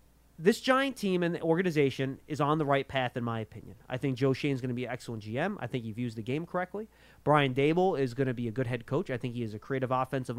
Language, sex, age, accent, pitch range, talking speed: English, male, 30-49, American, 130-195 Hz, 290 wpm